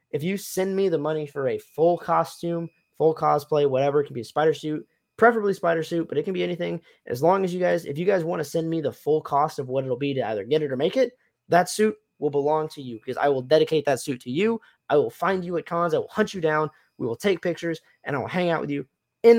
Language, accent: English, American